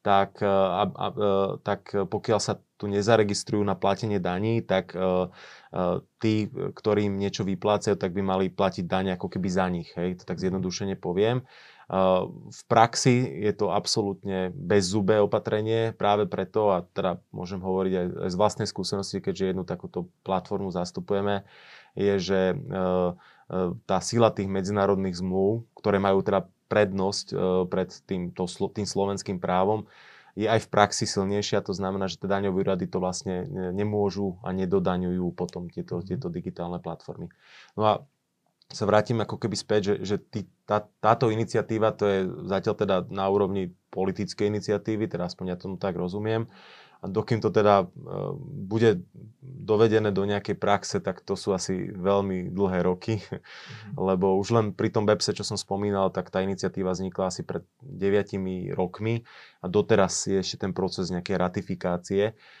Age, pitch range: 20-39, 95-105 Hz